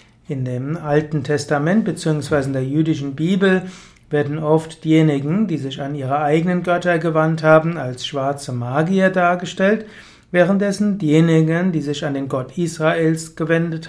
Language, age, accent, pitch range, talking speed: German, 60-79, German, 145-175 Hz, 145 wpm